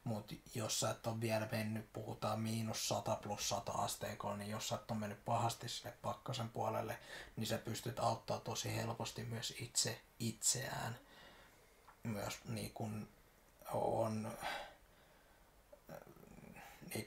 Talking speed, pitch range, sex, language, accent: 125 wpm, 110-115 Hz, male, Finnish, native